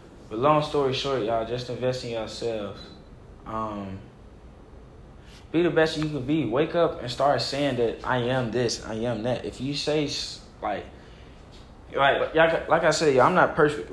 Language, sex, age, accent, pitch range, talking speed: English, male, 10-29, American, 110-135 Hz, 170 wpm